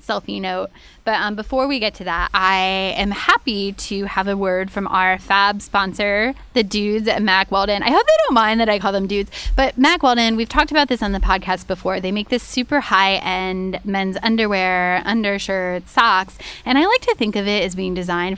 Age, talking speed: 10-29, 210 wpm